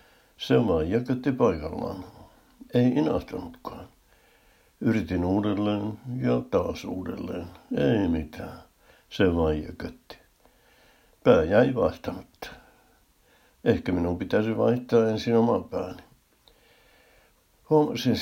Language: Finnish